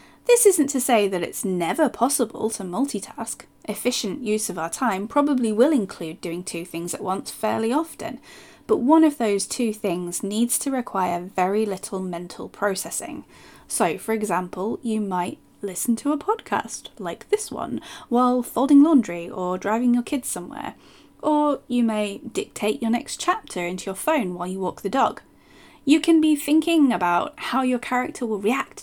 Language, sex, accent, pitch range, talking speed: English, female, British, 200-270 Hz, 175 wpm